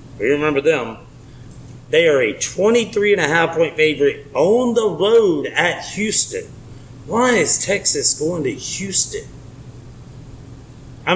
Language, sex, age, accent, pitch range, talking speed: English, male, 30-49, American, 130-185 Hz, 110 wpm